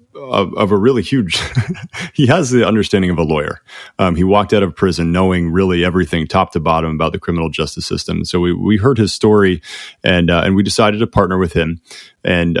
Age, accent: 30-49, American